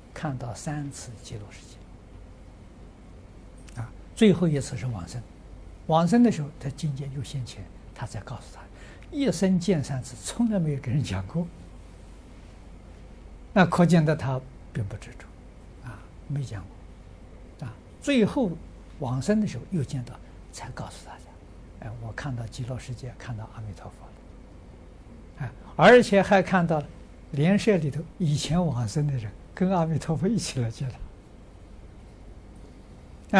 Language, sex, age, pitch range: Chinese, male, 60-79, 95-150 Hz